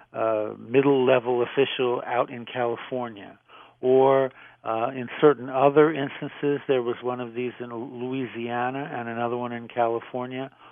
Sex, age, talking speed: male, 60-79, 135 wpm